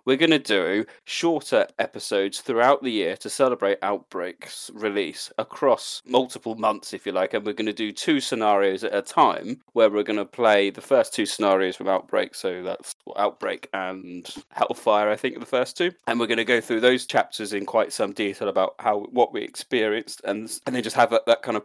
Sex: male